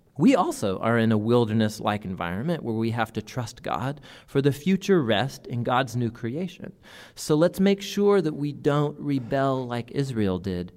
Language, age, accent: English, 40-59, American